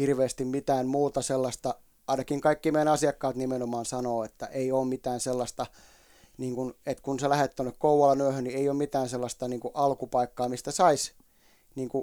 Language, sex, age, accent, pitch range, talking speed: Finnish, male, 30-49, native, 120-135 Hz, 160 wpm